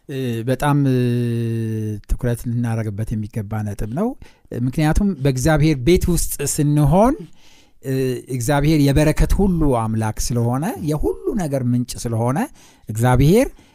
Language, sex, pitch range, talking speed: Amharic, male, 125-175 Hz, 90 wpm